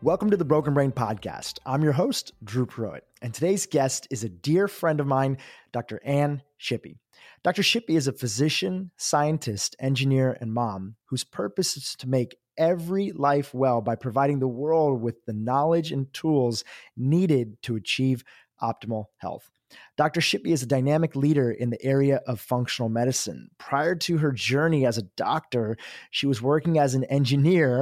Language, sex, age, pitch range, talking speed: English, male, 30-49, 120-150 Hz, 170 wpm